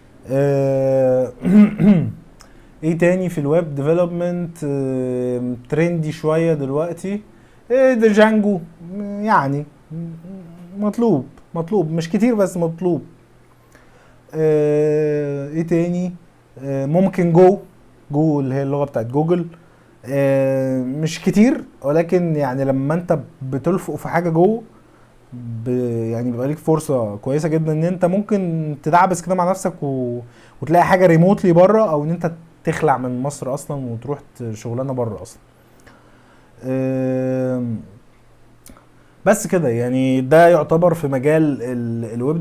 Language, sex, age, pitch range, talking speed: Arabic, male, 20-39, 135-175 Hz, 105 wpm